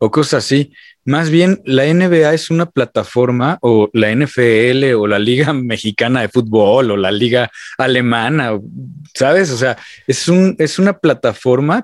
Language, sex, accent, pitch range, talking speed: Spanish, male, Mexican, 115-145 Hz, 155 wpm